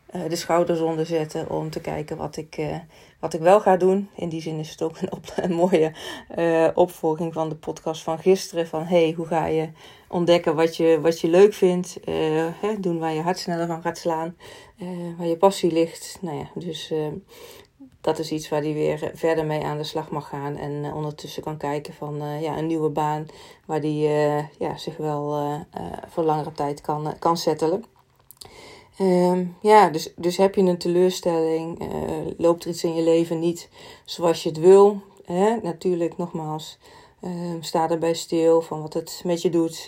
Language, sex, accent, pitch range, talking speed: Dutch, female, Dutch, 155-175 Hz, 195 wpm